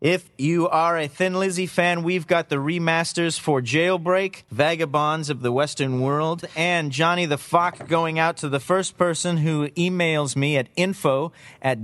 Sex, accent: male, American